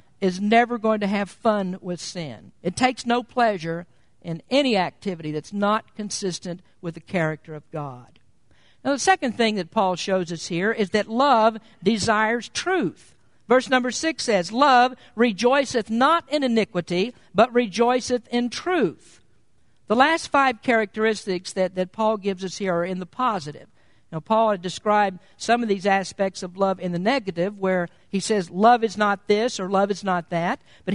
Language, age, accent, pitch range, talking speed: English, 50-69, American, 185-245 Hz, 175 wpm